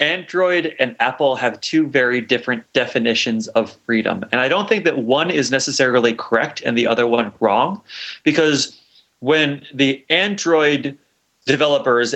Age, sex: 30-49, male